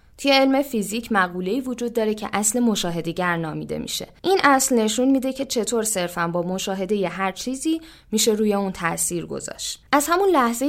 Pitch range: 185-255 Hz